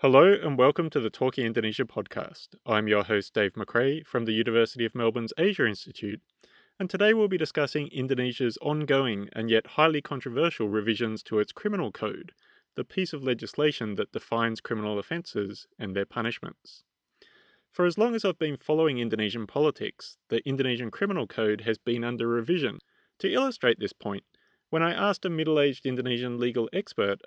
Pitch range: 110-155 Hz